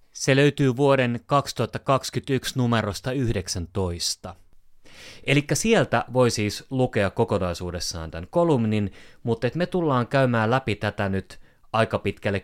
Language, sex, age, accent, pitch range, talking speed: Finnish, male, 30-49, native, 90-115 Hz, 110 wpm